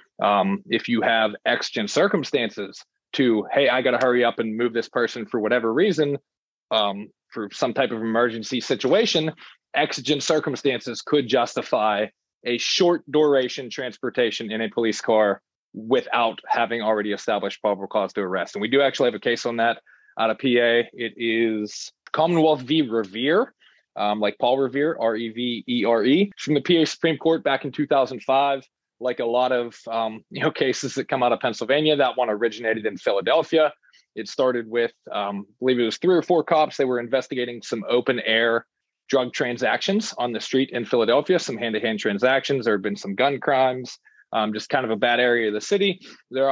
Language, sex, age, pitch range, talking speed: English, male, 20-39, 115-145 Hz, 180 wpm